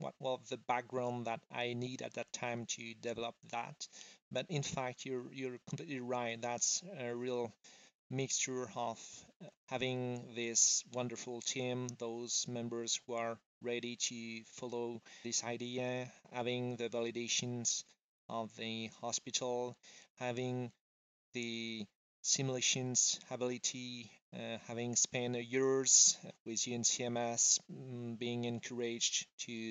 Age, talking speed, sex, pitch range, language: 30-49, 115 wpm, male, 115-130 Hz, English